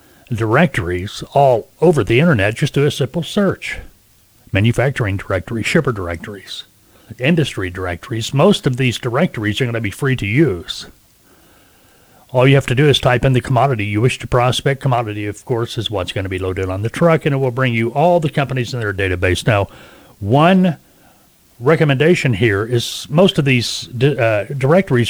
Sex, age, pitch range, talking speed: male, 40-59, 105-145 Hz, 175 wpm